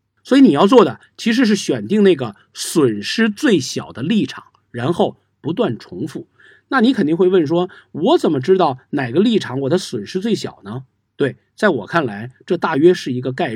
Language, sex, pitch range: Chinese, male, 125-200 Hz